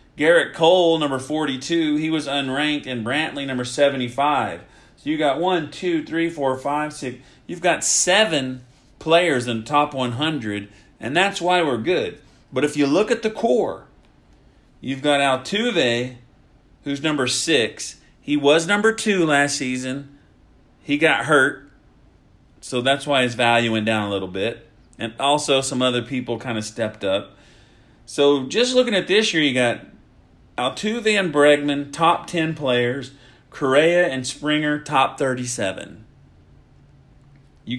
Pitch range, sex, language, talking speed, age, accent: 120-160 Hz, male, English, 150 wpm, 40-59, American